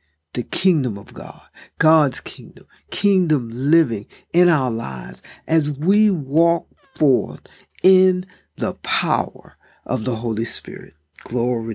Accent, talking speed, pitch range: American, 115 wpm, 125-170 Hz